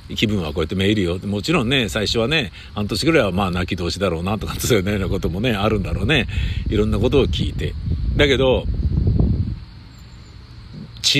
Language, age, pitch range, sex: Japanese, 50-69, 90-120 Hz, male